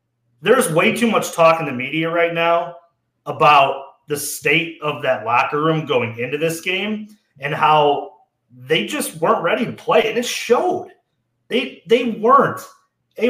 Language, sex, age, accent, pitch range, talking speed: English, male, 30-49, American, 170-250 Hz, 160 wpm